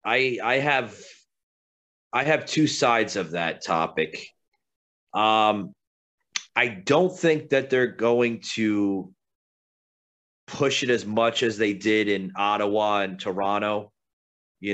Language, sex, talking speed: English, male, 120 wpm